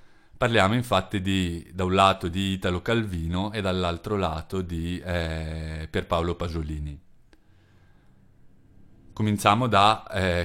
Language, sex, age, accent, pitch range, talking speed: Italian, male, 30-49, native, 85-100 Hz, 110 wpm